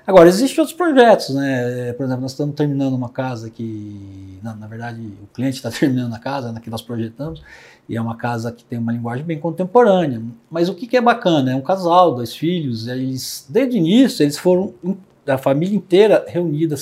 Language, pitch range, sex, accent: Portuguese, 130-170 Hz, male, Brazilian